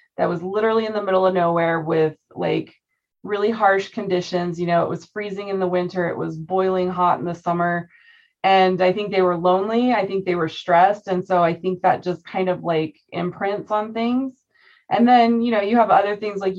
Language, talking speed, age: English, 215 wpm, 20-39